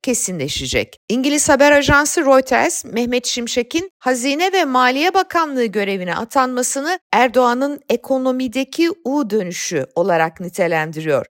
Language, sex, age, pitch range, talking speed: Turkish, female, 50-69, 210-290 Hz, 95 wpm